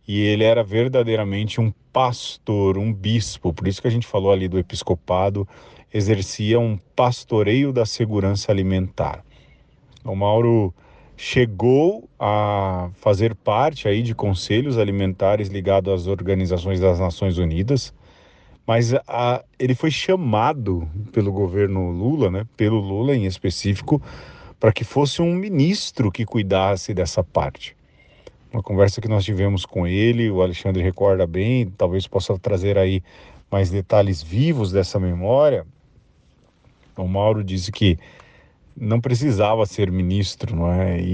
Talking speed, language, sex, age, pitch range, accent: 130 wpm, Portuguese, male, 40-59, 95-115 Hz, Brazilian